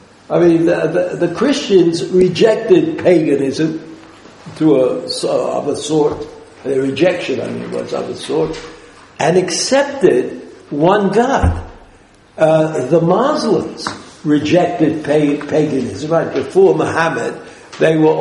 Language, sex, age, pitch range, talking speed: English, male, 60-79, 155-215 Hz, 120 wpm